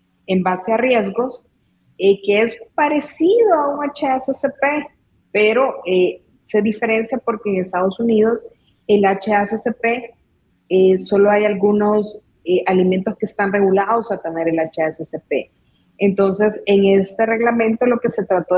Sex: female